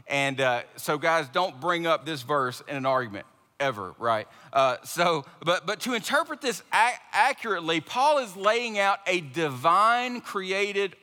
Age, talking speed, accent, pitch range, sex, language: 40-59, 165 wpm, American, 145-200 Hz, male, English